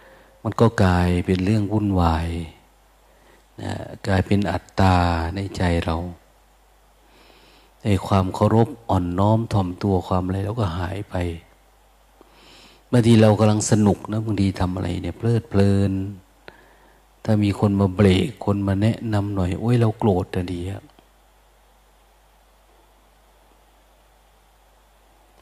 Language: Thai